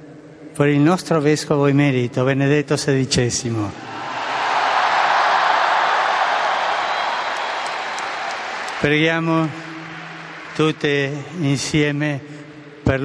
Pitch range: 135-155 Hz